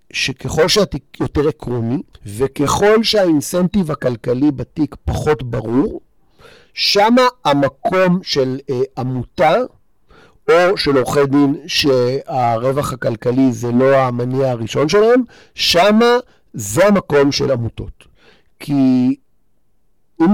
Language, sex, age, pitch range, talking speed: Hebrew, male, 50-69, 120-150 Hz, 95 wpm